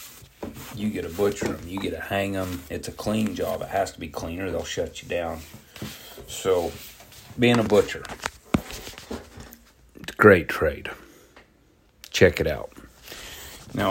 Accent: American